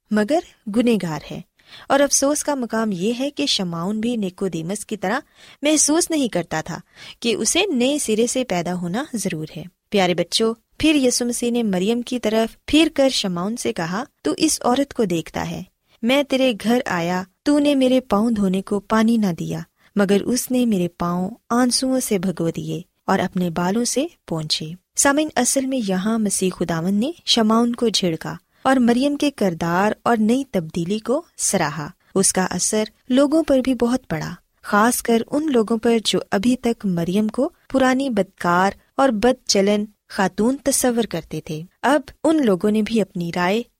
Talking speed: 175 wpm